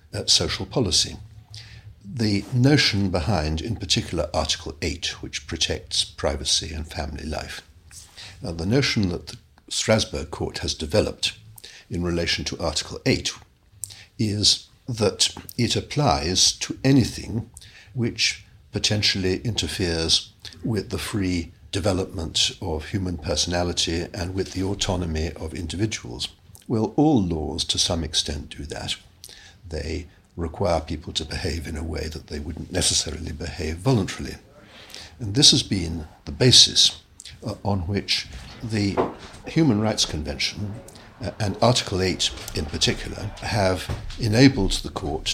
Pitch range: 80-110 Hz